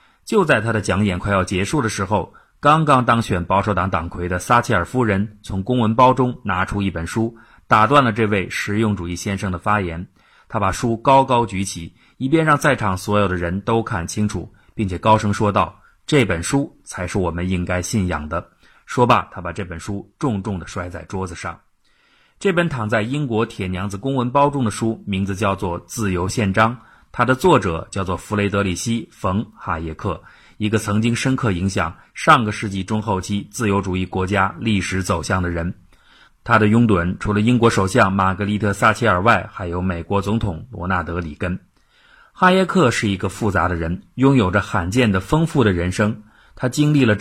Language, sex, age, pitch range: Chinese, male, 30-49, 95-120 Hz